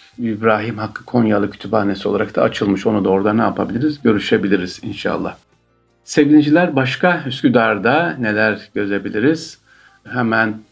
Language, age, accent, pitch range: Turkish, 50-69, native, 105-125 Hz